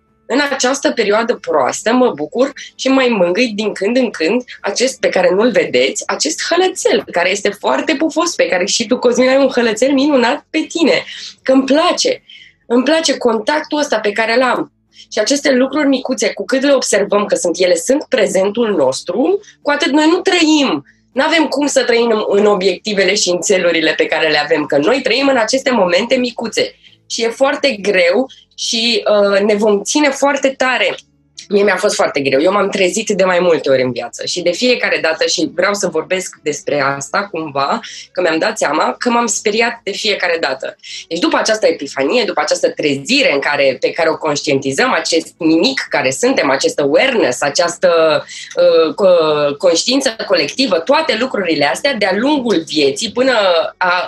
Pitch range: 180-275 Hz